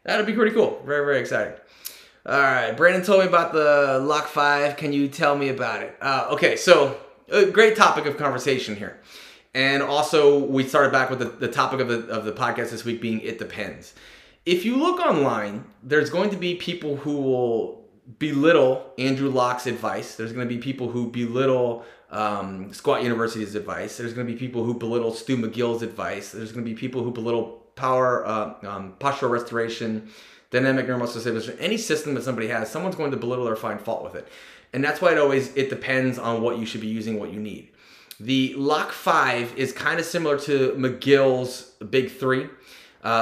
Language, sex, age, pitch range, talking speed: English, male, 30-49, 115-145 Hz, 195 wpm